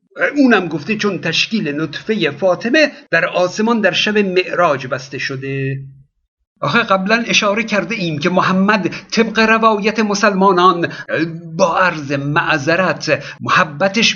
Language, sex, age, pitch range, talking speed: Persian, male, 50-69, 170-220 Hz, 115 wpm